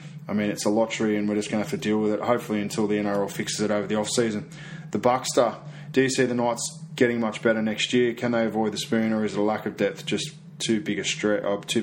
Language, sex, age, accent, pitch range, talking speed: English, male, 20-39, Australian, 105-150 Hz, 275 wpm